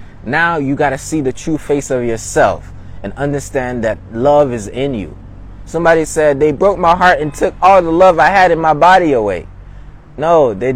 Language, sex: English, male